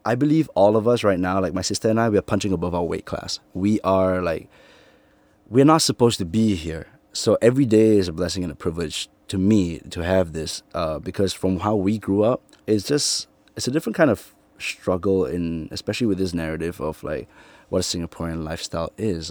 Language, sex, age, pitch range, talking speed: English, male, 20-39, 85-100 Hz, 215 wpm